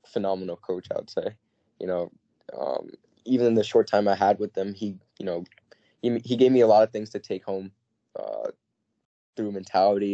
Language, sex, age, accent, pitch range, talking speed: English, male, 10-29, American, 95-120 Hz, 200 wpm